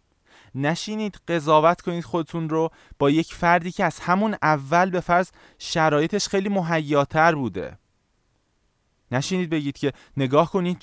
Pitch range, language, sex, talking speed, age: 130-175 Hz, Persian, male, 130 wpm, 20-39